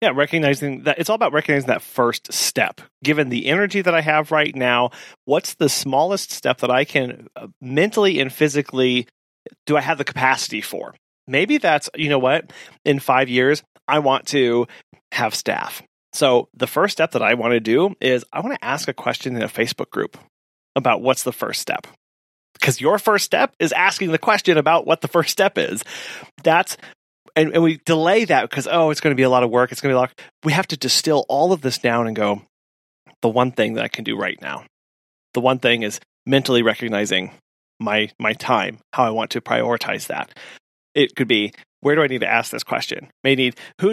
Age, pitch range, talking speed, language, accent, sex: 30-49, 125-155 Hz, 215 wpm, English, American, male